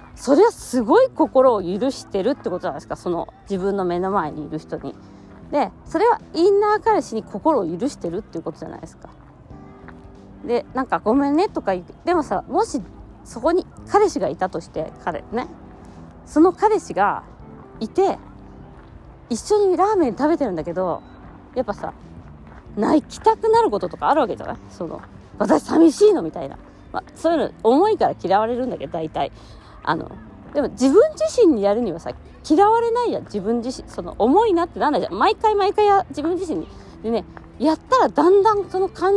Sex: female